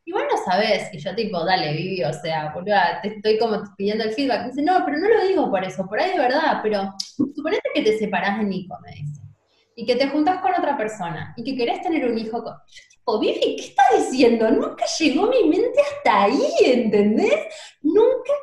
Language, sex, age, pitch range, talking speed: Spanish, female, 20-39, 190-295 Hz, 220 wpm